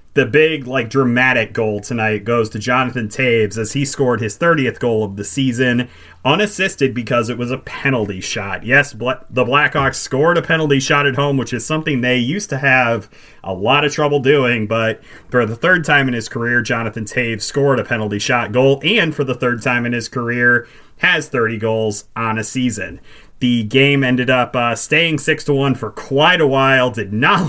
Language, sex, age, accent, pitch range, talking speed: English, male, 30-49, American, 115-140 Hz, 195 wpm